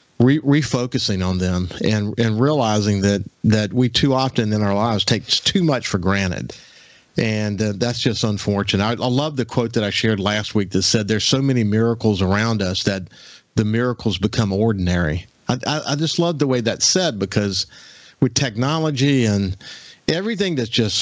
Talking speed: 185 wpm